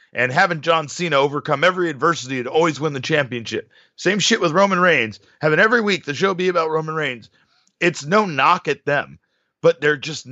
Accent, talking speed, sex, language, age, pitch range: American, 200 wpm, male, English, 30-49, 120-160 Hz